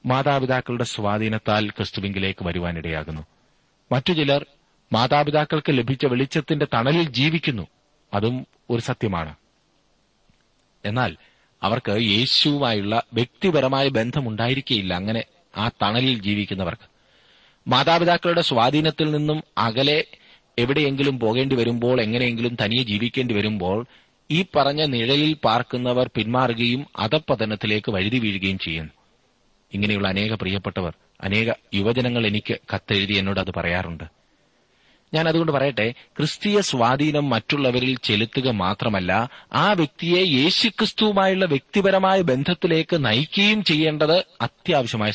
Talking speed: 90 wpm